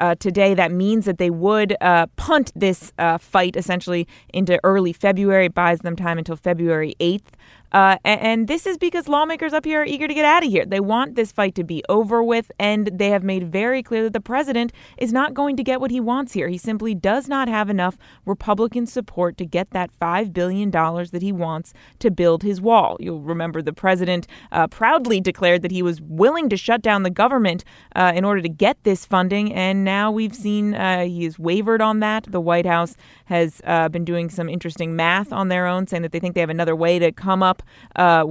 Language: English